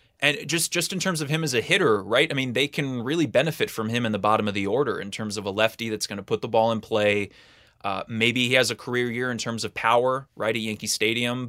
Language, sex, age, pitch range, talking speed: English, male, 20-39, 105-125 Hz, 275 wpm